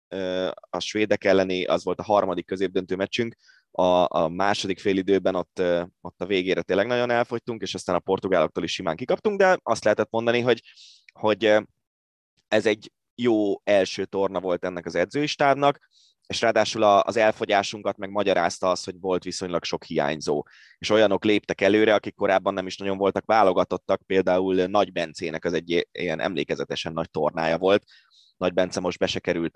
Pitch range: 90-110 Hz